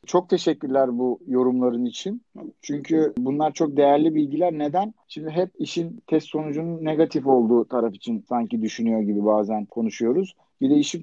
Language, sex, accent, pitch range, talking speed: Turkish, male, native, 135-165 Hz, 150 wpm